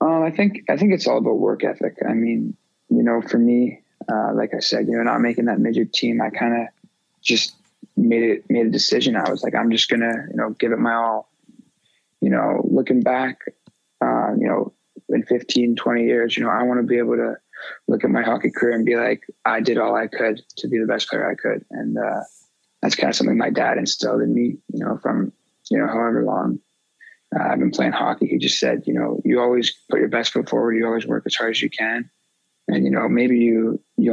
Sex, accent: male, American